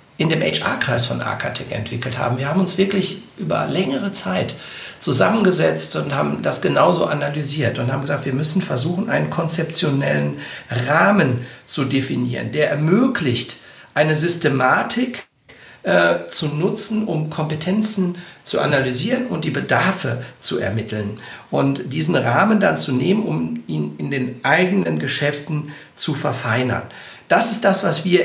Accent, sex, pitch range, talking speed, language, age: German, male, 130-185 Hz, 140 wpm, German, 60-79